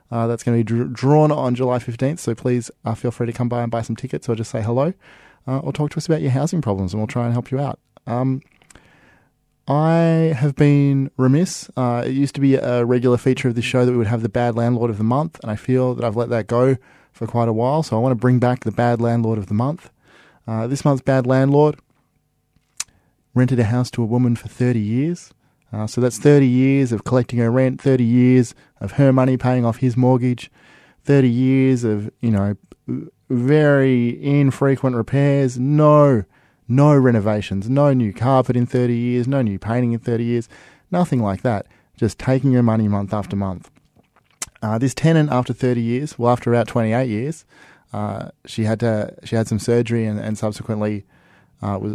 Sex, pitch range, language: male, 115-135 Hz, English